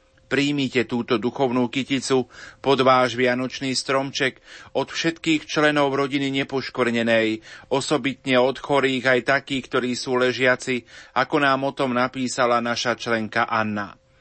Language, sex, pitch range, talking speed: Slovak, male, 125-140 Hz, 125 wpm